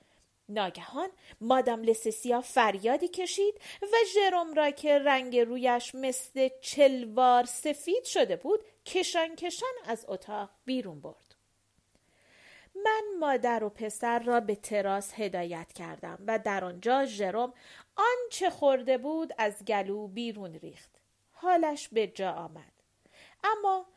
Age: 40-59